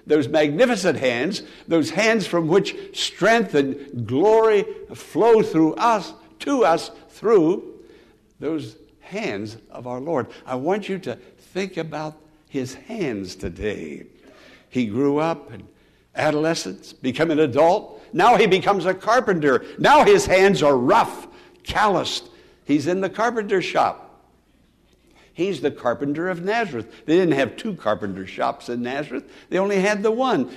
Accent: American